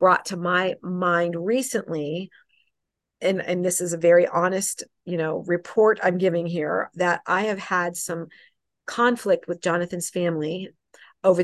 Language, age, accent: English, 40-59, American